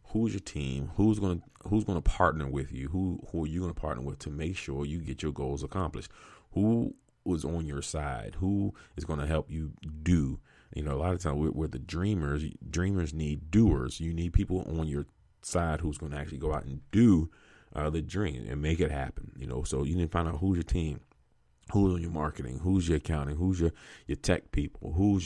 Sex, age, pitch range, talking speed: male, 40-59, 70-90 Hz, 235 wpm